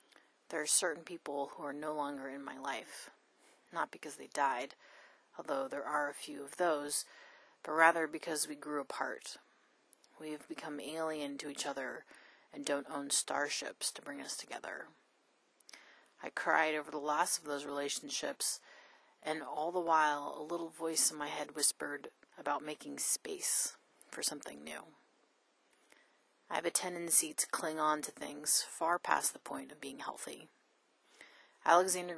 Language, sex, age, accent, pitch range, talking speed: English, female, 30-49, American, 145-170 Hz, 160 wpm